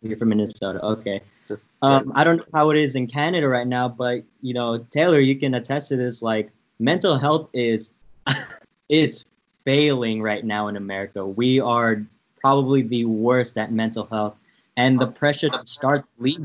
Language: English